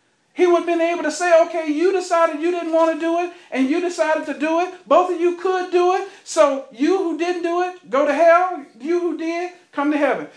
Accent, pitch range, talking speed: American, 260-335 Hz, 250 wpm